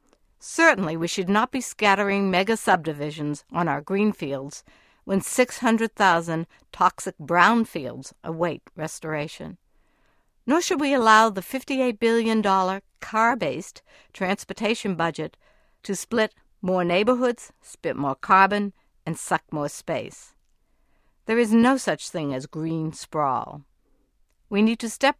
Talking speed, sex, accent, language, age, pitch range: 120 wpm, female, American, English, 60-79, 165-220 Hz